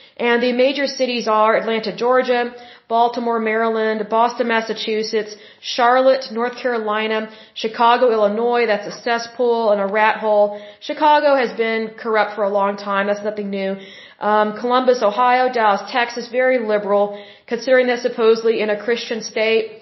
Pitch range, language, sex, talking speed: 210-240 Hz, Spanish, female, 145 wpm